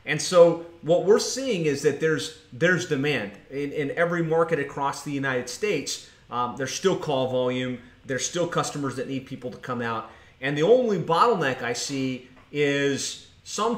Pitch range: 130-165 Hz